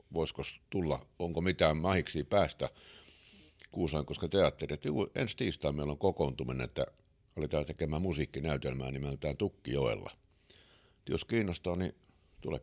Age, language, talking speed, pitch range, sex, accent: 60-79, Finnish, 125 wpm, 75-90 Hz, male, native